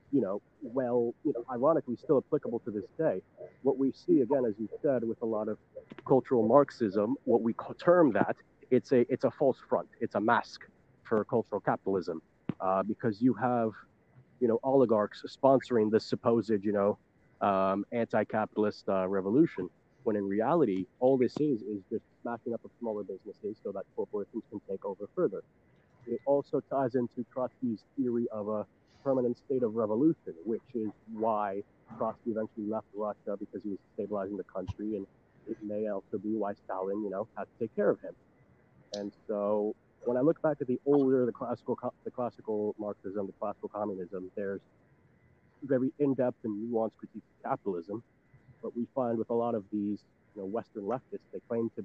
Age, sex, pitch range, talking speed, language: 30-49, male, 105-130 Hz, 180 wpm, English